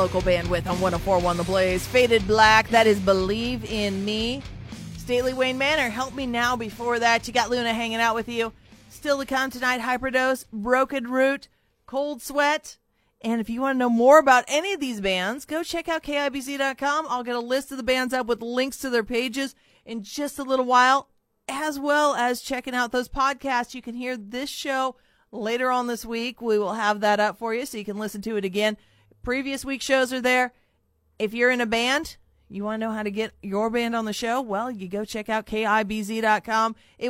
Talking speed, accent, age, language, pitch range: 210 wpm, American, 40-59, English, 210-260 Hz